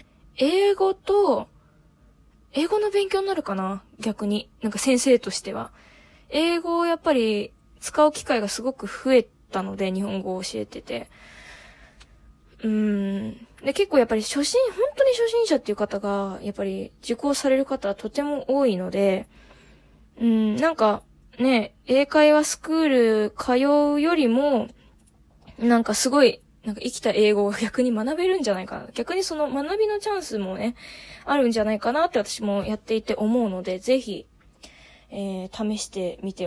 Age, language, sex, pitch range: 20-39, Japanese, female, 210-285 Hz